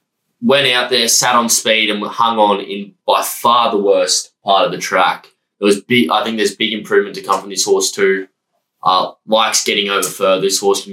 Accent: Australian